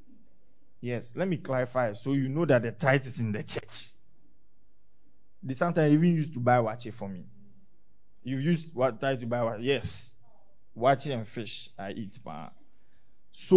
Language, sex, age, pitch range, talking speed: English, male, 20-39, 130-185 Hz, 160 wpm